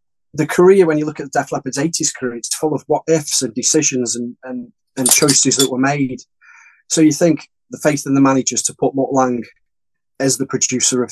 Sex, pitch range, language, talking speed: male, 125-155 Hz, English, 210 wpm